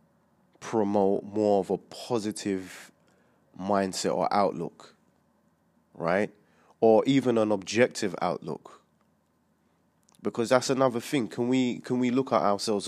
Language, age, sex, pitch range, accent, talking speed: English, 20-39, male, 85-110 Hz, British, 115 wpm